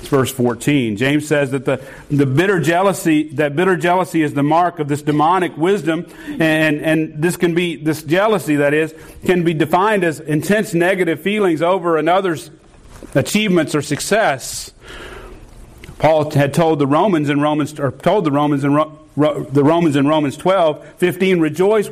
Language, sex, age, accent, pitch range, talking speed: English, male, 40-59, American, 130-170 Hz, 165 wpm